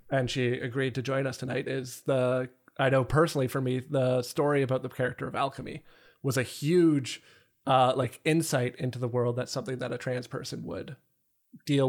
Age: 20-39